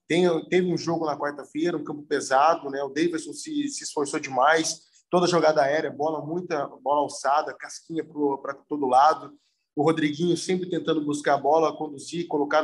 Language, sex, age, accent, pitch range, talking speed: Portuguese, male, 20-39, Brazilian, 145-175 Hz, 170 wpm